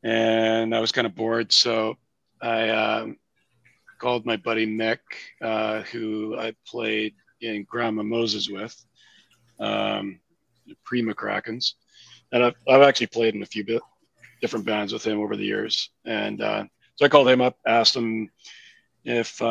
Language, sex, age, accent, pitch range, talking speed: English, male, 40-59, American, 110-120 Hz, 155 wpm